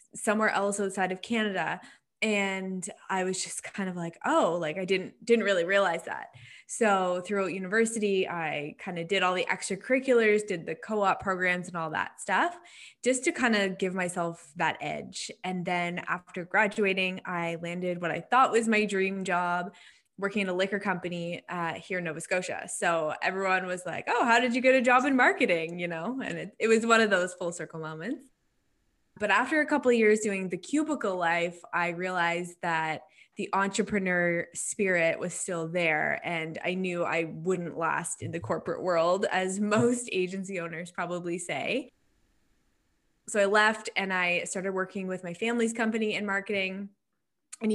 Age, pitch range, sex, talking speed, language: 20-39, 175-215 Hz, female, 180 wpm, English